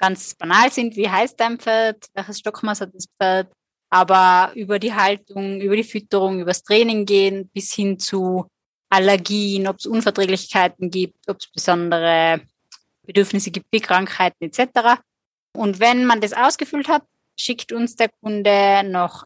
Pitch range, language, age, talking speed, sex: 185-220 Hz, German, 20-39, 155 wpm, female